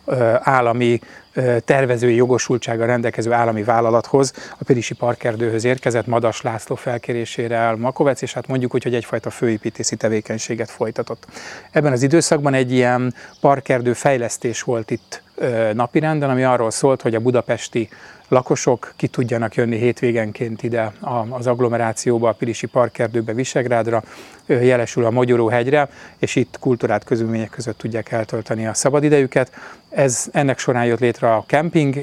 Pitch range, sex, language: 115-135 Hz, male, Hungarian